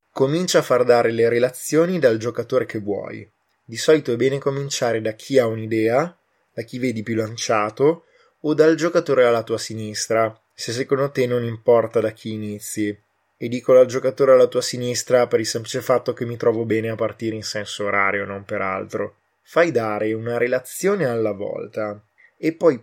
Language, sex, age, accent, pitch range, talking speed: Italian, male, 20-39, native, 110-135 Hz, 180 wpm